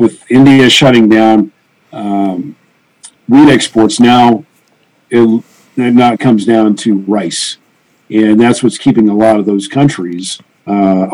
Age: 50-69